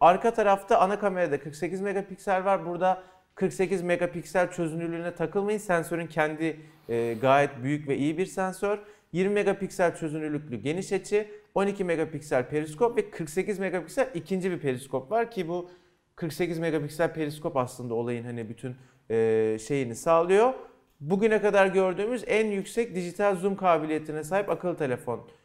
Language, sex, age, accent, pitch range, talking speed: Turkish, male, 40-59, native, 150-205 Hz, 135 wpm